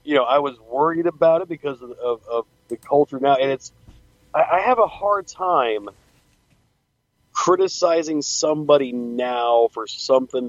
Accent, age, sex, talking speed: American, 40-59, male, 155 wpm